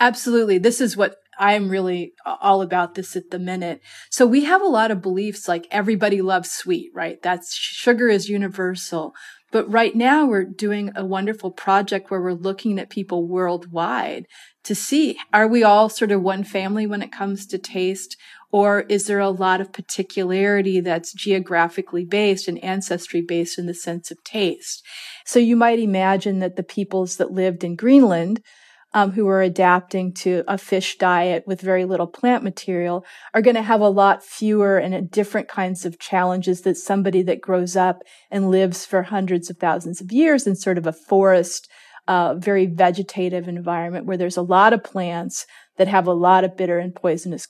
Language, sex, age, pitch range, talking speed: English, female, 30-49, 180-210 Hz, 185 wpm